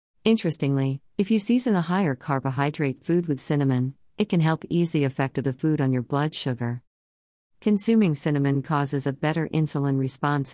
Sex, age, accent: female, 50-69, American